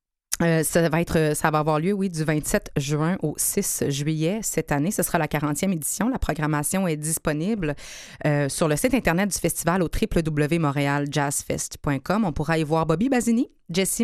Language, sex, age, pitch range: French, female, 20-39, 155-210 Hz